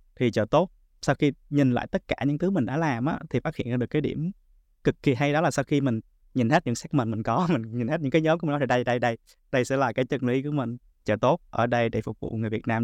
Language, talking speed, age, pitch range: Vietnamese, 320 wpm, 20-39, 110-140 Hz